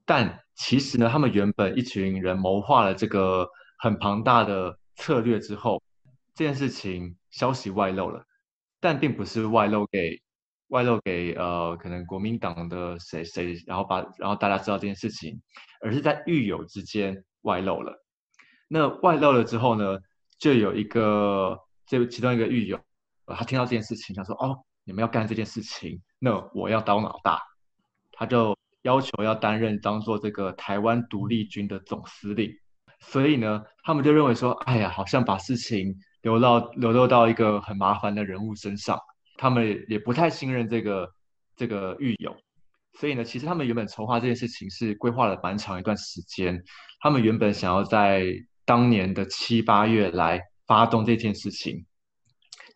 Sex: male